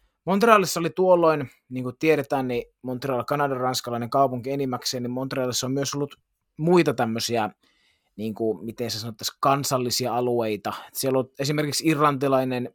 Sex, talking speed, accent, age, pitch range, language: male, 130 wpm, native, 30-49, 115-145 Hz, Finnish